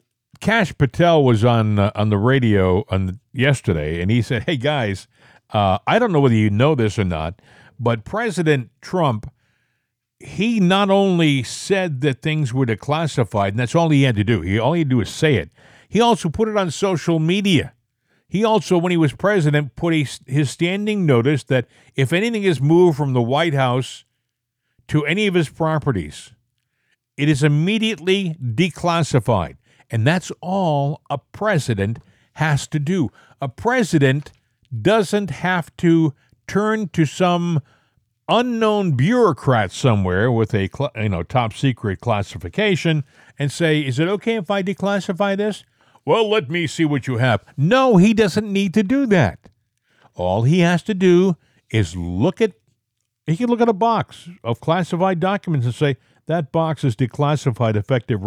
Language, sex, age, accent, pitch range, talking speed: English, male, 50-69, American, 120-180 Hz, 165 wpm